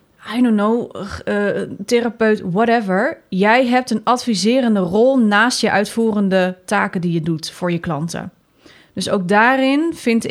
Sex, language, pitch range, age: female, Dutch, 190-240 Hz, 30-49